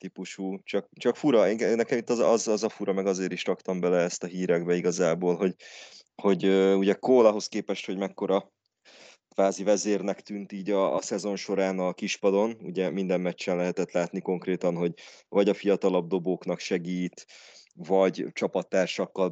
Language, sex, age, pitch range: Hungarian, male, 20-39, 90-100 Hz